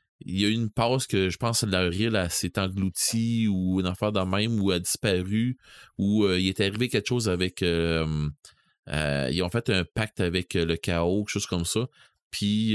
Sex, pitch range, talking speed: male, 85-105 Hz, 215 wpm